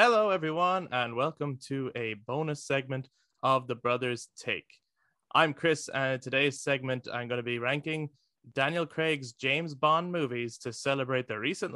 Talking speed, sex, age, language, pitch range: 165 wpm, male, 20-39, English, 120-150 Hz